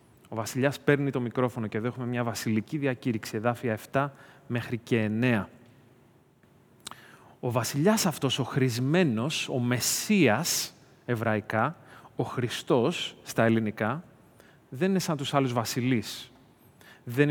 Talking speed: 120 wpm